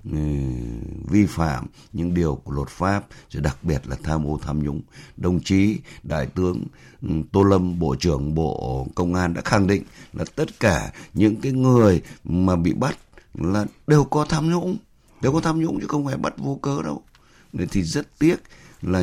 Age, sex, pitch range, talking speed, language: 60-79, male, 80-120 Hz, 185 wpm, Vietnamese